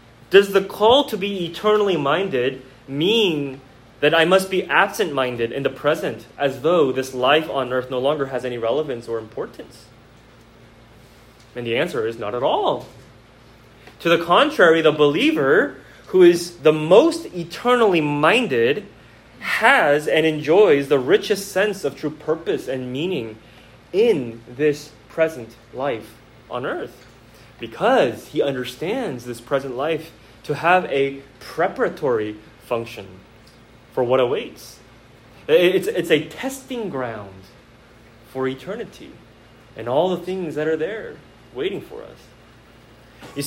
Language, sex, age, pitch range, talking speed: English, male, 20-39, 125-170 Hz, 135 wpm